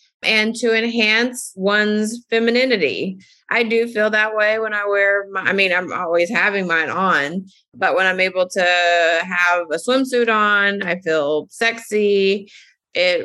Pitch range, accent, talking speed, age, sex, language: 185-220 Hz, American, 155 wpm, 30-49, female, English